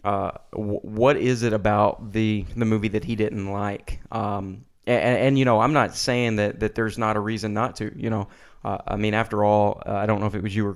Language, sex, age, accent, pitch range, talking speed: English, male, 30-49, American, 105-120 Hz, 245 wpm